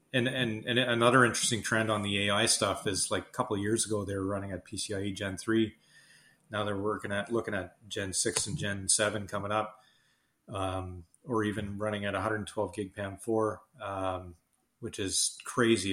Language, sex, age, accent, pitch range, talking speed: English, male, 30-49, American, 100-115 Hz, 190 wpm